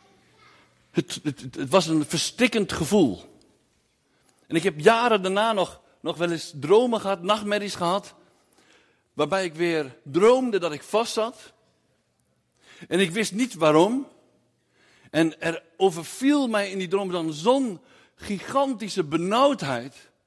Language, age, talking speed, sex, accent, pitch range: Dutch, 60-79, 125 wpm, male, Dutch, 170-230 Hz